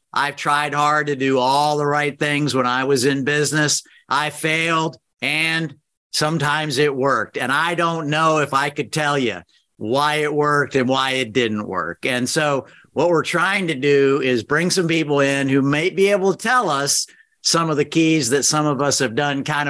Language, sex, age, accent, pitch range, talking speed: English, male, 50-69, American, 130-150 Hz, 205 wpm